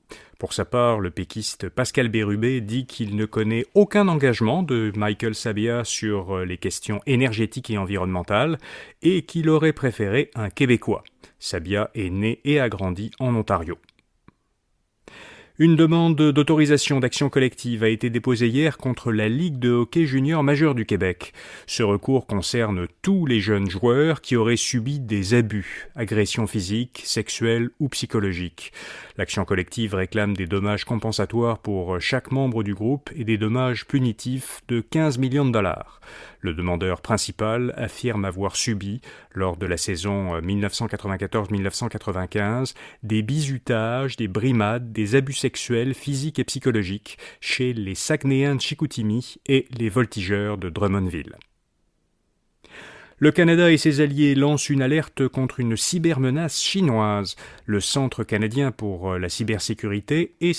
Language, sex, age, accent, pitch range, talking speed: French, male, 30-49, French, 105-135 Hz, 140 wpm